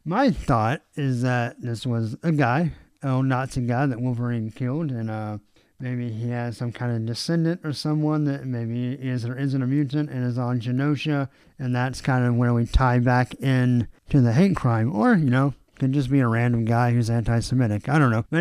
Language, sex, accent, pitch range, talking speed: English, male, American, 120-150 Hz, 215 wpm